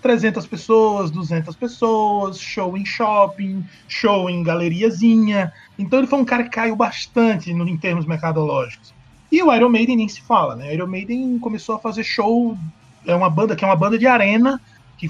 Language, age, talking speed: Portuguese, 20-39, 185 wpm